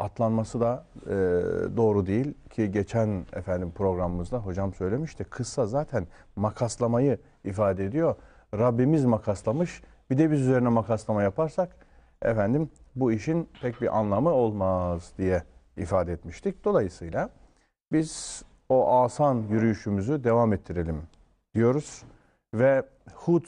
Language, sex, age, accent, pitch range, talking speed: Turkish, male, 40-59, native, 90-125 Hz, 110 wpm